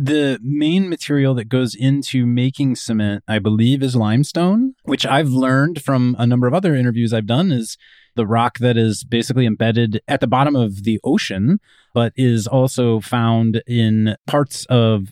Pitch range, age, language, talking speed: 110-135 Hz, 30-49, English, 170 wpm